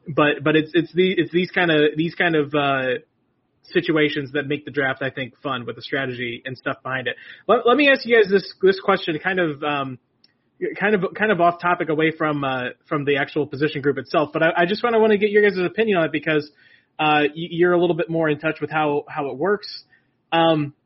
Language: English